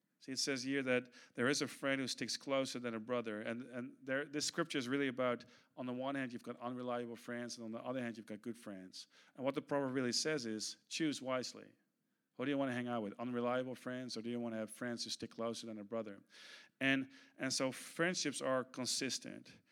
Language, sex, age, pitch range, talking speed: Dutch, male, 50-69, 110-130 Hz, 235 wpm